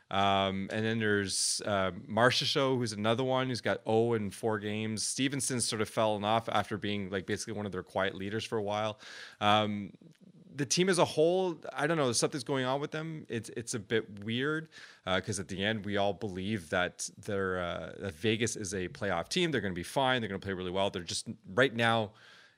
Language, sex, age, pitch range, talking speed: English, male, 30-49, 105-135 Hz, 230 wpm